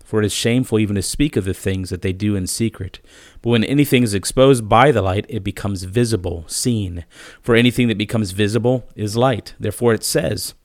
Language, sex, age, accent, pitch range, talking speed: English, male, 40-59, American, 100-115 Hz, 210 wpm